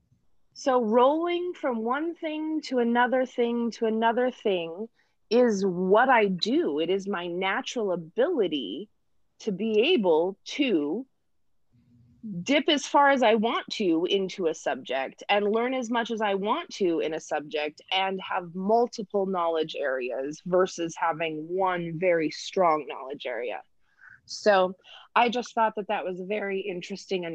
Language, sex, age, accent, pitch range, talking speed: English, female, 20-39, American, 185-255 Hz, 145 wpm